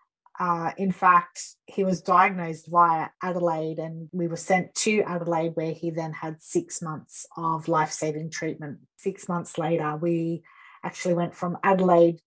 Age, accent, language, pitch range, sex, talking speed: 30-49, Australian, English, 170-190 Hz, female, 150 wpm